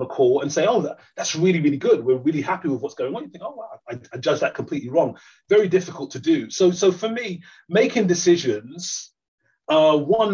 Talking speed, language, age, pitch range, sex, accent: 225 wpm, English, 30-49, 140-220 Hz, male, British